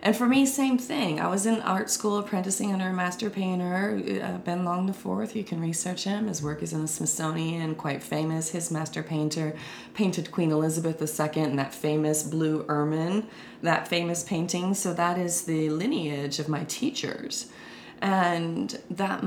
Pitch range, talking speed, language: 150-190 Hz, 175 wpm, English